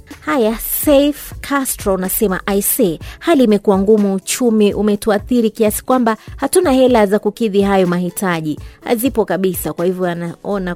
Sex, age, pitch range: female, 30-49, 180-230 Hz